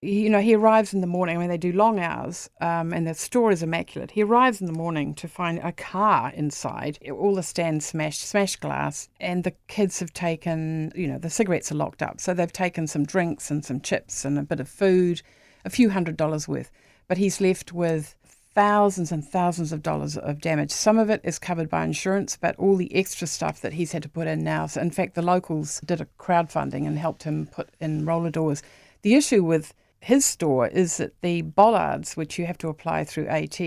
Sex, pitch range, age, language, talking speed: female, 155-190 Hz, 50-69, English, 220 wpm